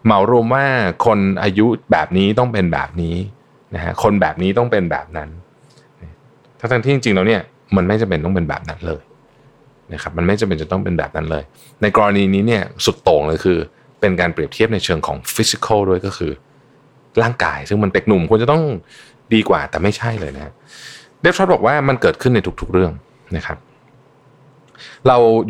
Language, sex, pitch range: Thai, male, 85-120 Hz